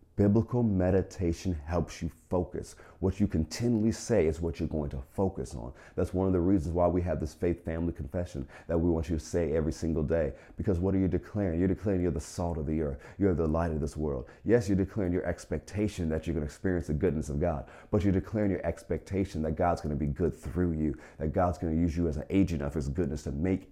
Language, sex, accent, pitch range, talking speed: English, male, American, 75-95 Hz, 245 wpm